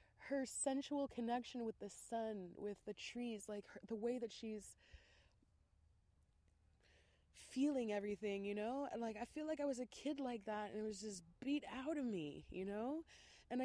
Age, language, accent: 20-39, English, American